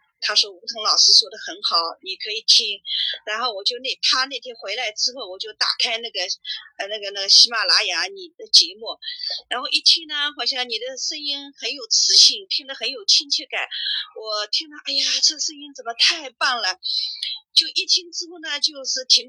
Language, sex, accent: Chinese, female, native